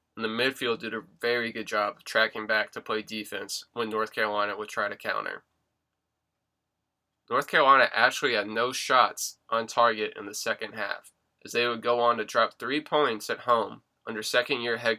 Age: 20-39